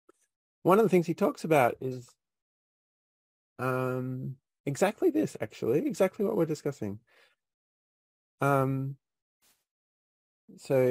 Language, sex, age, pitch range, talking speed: English, male, 30-49, 105-145 Hz, 100 wpm